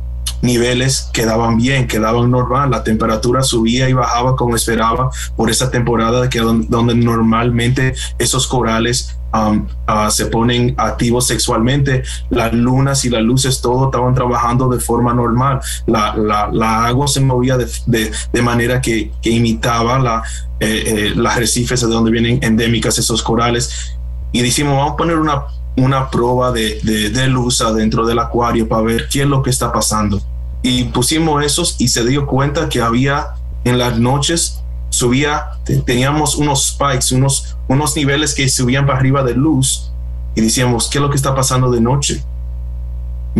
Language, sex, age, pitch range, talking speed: Spanish, male, 20-39, 110-130 Hz, 160 wpm